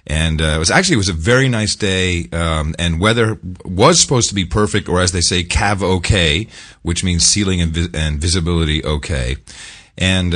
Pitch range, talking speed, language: 80-105 Hz, 195 wpm, English